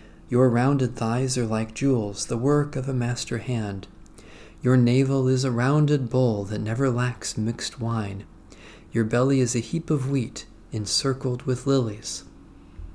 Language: English